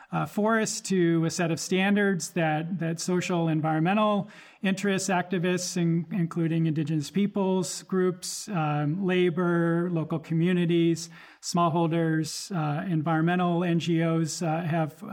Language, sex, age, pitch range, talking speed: English, male, 40-59, 165-185 Hz, 110 wpm